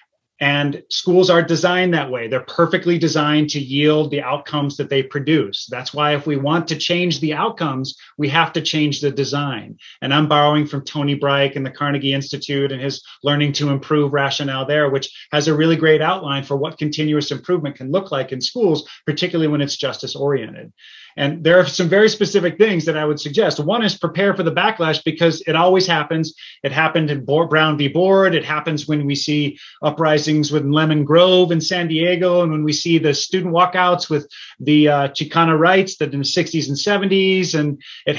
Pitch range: 145-175 Hz